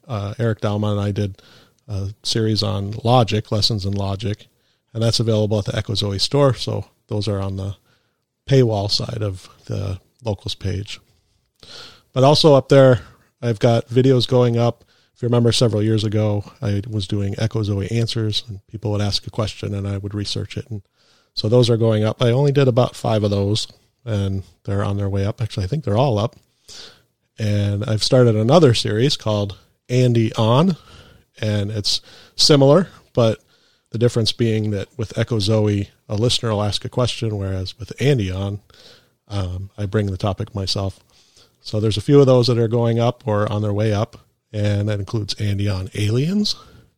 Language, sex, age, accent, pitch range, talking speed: English, male, 40-59, American, 100-120 Hz, 185 wpm